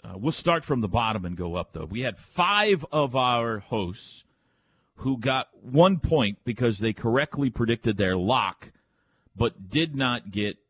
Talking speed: 170 wpm